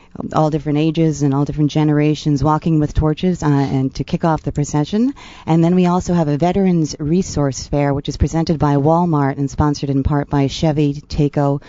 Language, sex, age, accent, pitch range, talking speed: English, female, 40-59, American, 145-170 Hz, 195 wpm